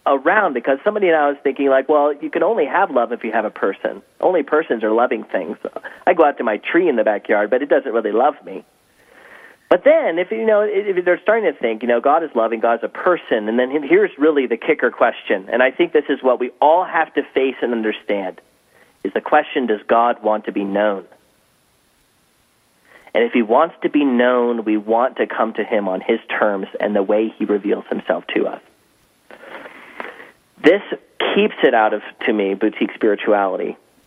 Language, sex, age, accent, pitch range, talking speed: English, male, 30-49, American, 110-150 Hz, 210 wpm